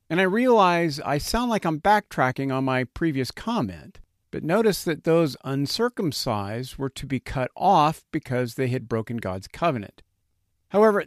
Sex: male